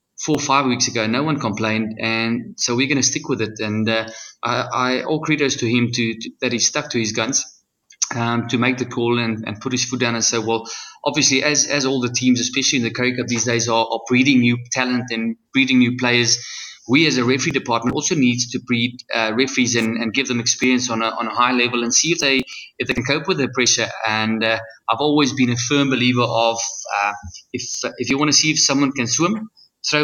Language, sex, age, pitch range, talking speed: English, male, 20-39, 115-130 Hz, 245 wpm